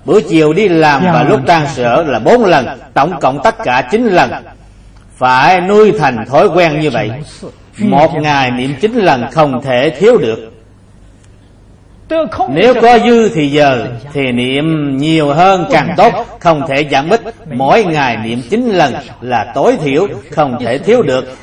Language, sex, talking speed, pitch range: Vietnamese, male, 170 wpm, 105-160 Hz